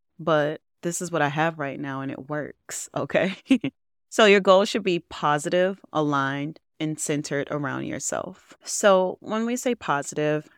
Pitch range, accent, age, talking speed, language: 145-180 Hz, American, 30-49, 160 wpm, English